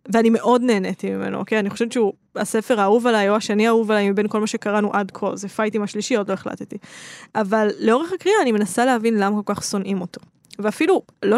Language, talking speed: Hebrew, 200 wpm